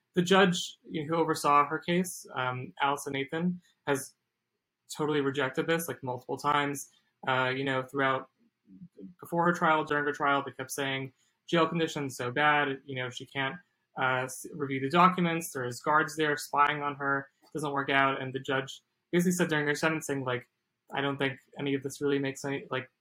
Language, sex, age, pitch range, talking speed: English, male, 20-39, 135-165 Hz, 190 wpm